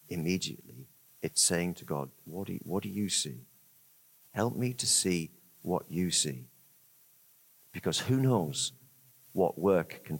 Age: 50-69